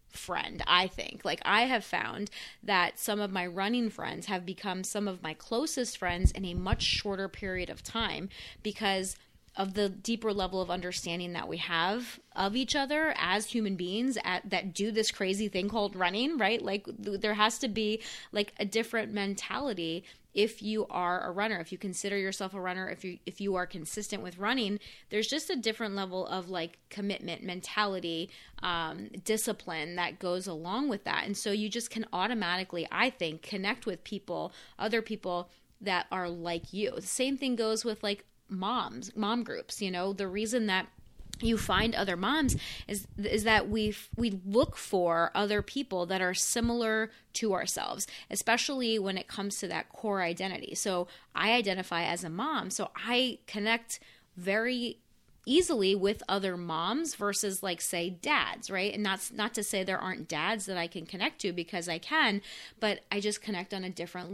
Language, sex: English, female